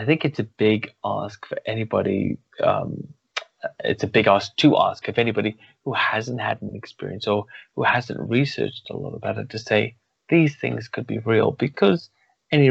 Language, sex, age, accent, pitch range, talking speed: English, male, 20-39, British, 105-130 Hz, 185 wpm